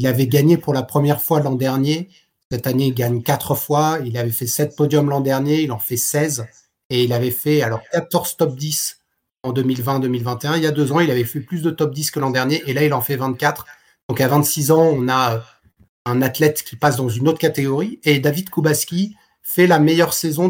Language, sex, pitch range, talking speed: French, male, 130-165 Hz, 230 wpm